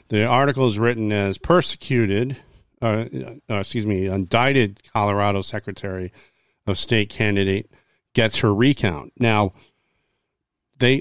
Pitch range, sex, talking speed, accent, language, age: 100-120 Hz, male, 115 wpm, American, English, 40-59